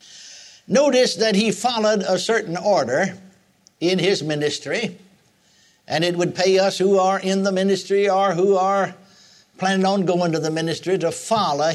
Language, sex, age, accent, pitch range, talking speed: English, male, 60-79, American, 165-205 Hz, 160 wpm